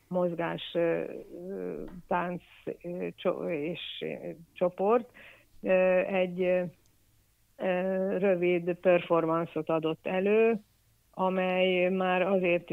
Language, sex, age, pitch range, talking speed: Hungarian, female, 50-69, 165-180 Hz, 55 wpm